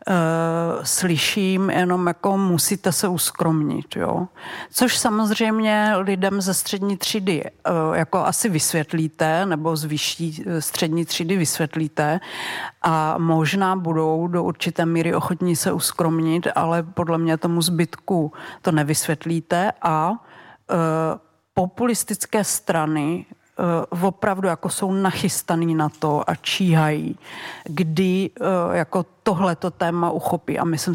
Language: Czech